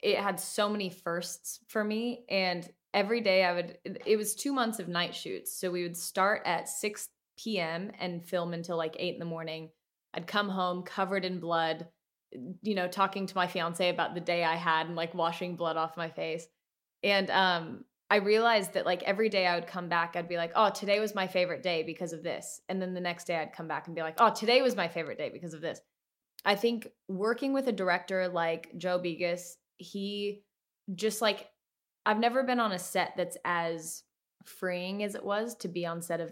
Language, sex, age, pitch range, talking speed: English, female, 20-39, 170-200 Hz, 215 wpm